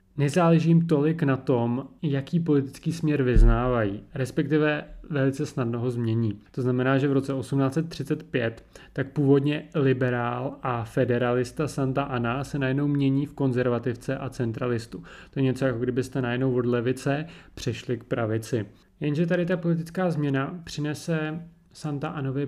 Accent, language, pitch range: native, Czech, 120-145 Hz